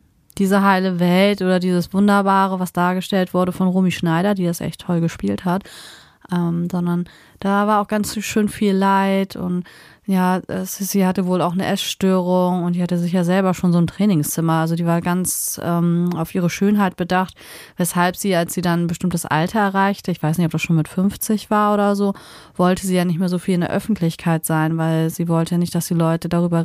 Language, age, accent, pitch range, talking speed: German, 20-39, German, 170-200 Hz, 215 wpm